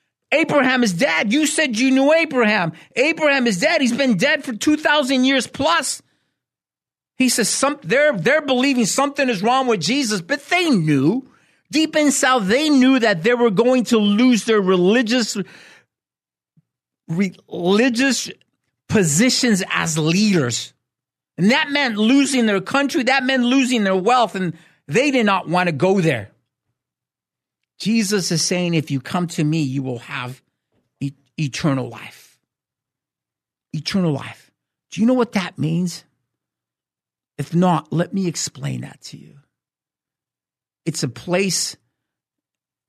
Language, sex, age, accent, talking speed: English, male, 50-69, American, 140 wpm